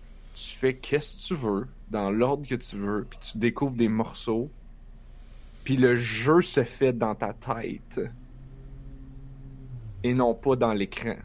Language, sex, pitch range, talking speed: French, male, 115-135 Hz, 155 wpm